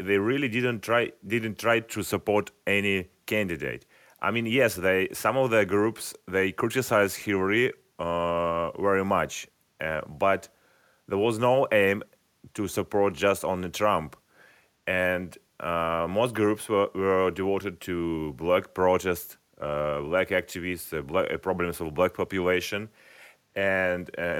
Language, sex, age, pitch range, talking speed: English, male, 30-49, 90-110 Hz, 140 wpm